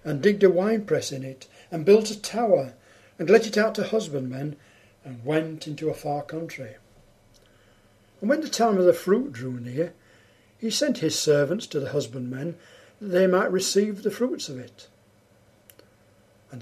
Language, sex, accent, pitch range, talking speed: English, male, British, 115-185 Hz, 170 wpm